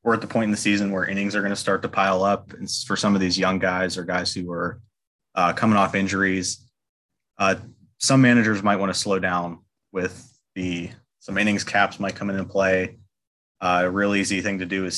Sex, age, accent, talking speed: male, 20-39, American, 225 wpm